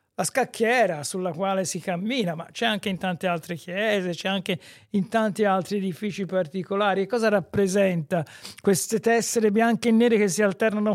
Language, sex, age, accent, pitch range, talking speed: Italian, male, 60-79, native, 170-220 Hz, 165 wpm